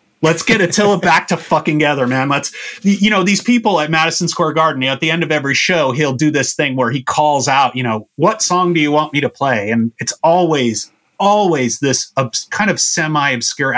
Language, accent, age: English, American, 30-49